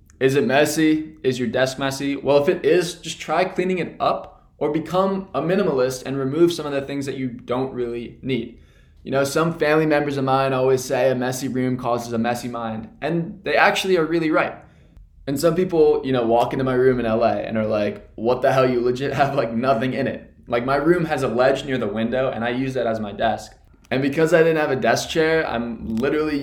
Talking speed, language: 235 wpm, English